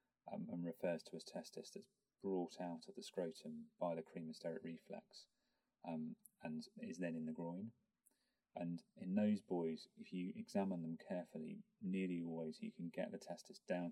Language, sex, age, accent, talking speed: English, male, 30-49, British, 170 wpm